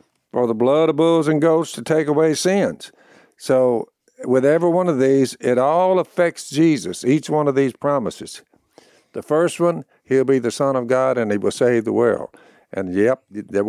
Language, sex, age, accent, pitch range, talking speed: English, male, 60-79, American, 120-150 Hz, 195 wpm